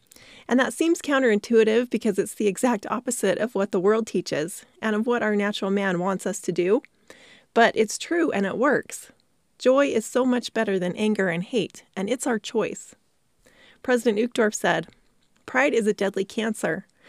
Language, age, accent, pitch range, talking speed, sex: English, 30-49, American, 200-240 Hz, 180 wpm, female